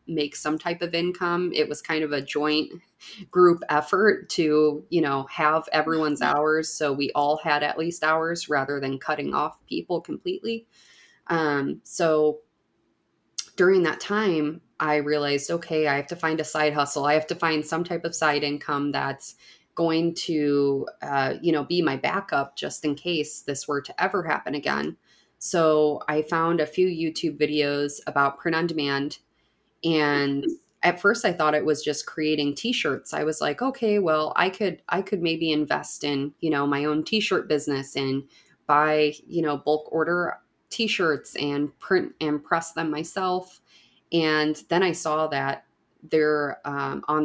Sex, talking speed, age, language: female, 170 wpm, 20-39, English